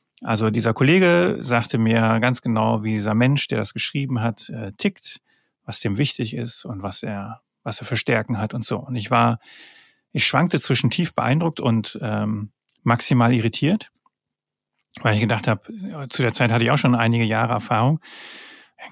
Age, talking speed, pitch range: 40-59, 180 wpm, 115-150 Hz